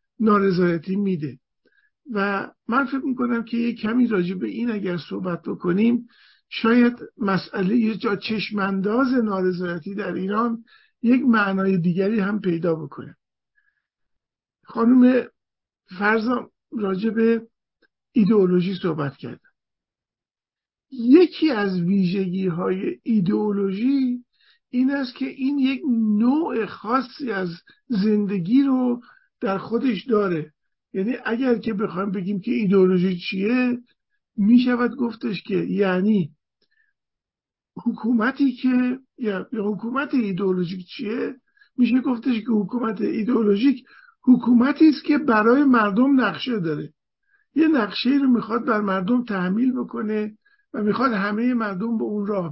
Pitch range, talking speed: 195-255 Hz, 110 wpm